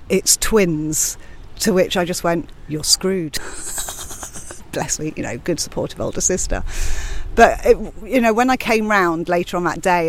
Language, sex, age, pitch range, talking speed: English, female, 40-59, 160-190 Hz, 175 wpm